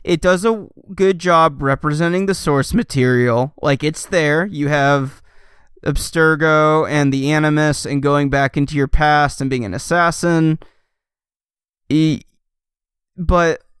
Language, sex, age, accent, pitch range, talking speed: English, male, 20-39, American, 140-170 Hz, 125 wpm